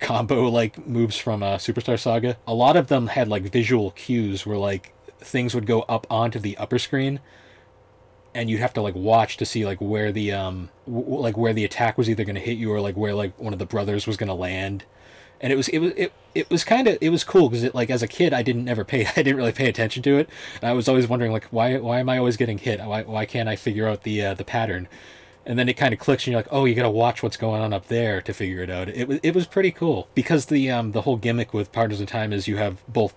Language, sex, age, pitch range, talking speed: English, male, 20-39, 105-120 Hz, 285 wpm